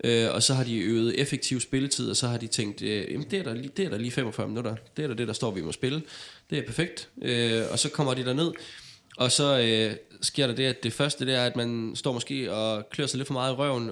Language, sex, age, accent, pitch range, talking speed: Danish, male, 20-39, native, 115-140 Hz, 275 wpm